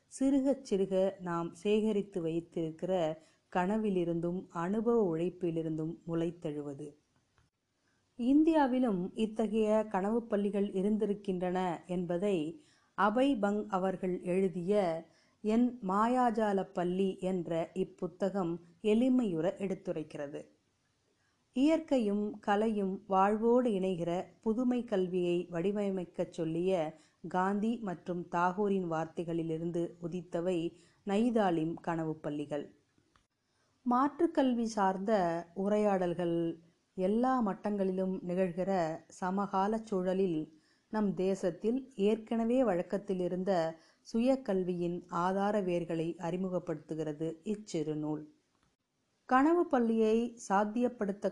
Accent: native